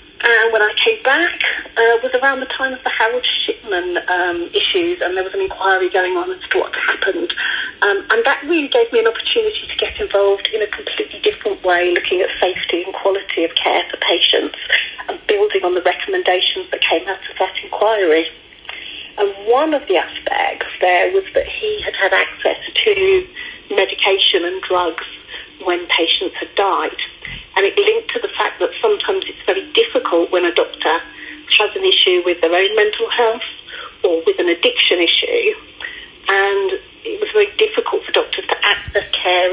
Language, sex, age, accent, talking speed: English, female, 40-59, British, 170 wpm